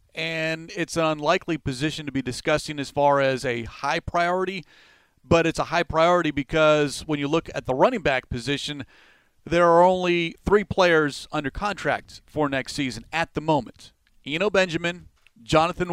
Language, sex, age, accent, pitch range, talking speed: English, male, 40-59, American, 135-165 Hz, 165 wpm